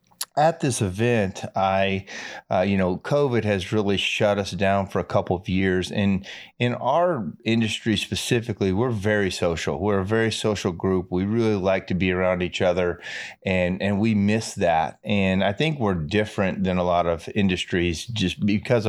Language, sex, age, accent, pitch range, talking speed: English, male, 30-49, American, 90-105 Hz, 180 wpm